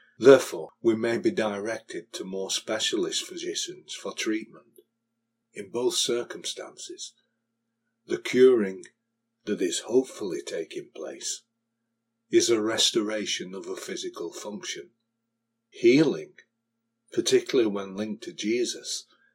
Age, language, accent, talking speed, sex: 50-69, English, British, 105 wpm, male